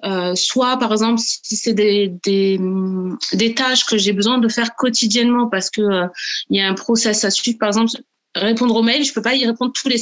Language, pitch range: French, 195-230 Hz